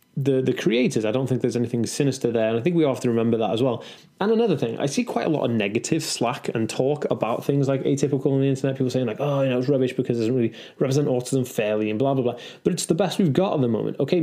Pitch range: 120-150 Hz